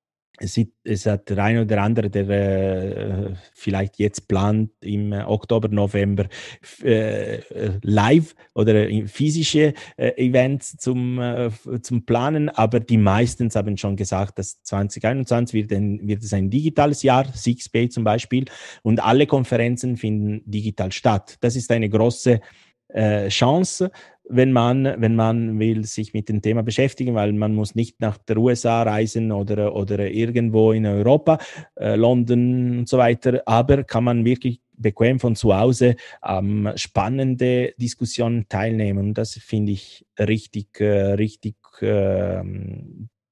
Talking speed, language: 130 wpm, German